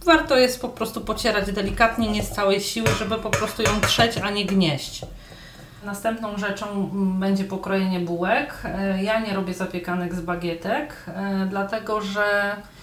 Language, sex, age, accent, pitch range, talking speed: Polish, female, 30-49, native, 195-220 Hz, 145 wpm